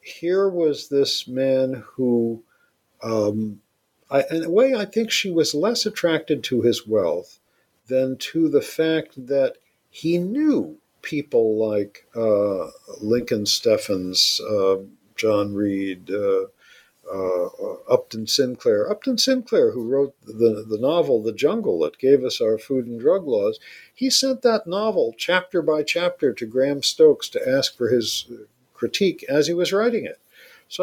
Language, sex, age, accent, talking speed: English, male, 60-79, American, 145 wpm